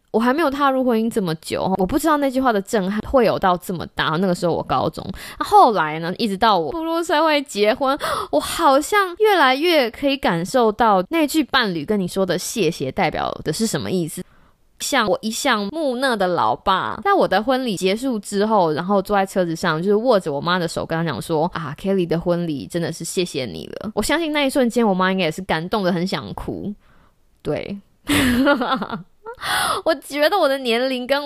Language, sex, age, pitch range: Chinese, female, 20-39, 175-260 Hz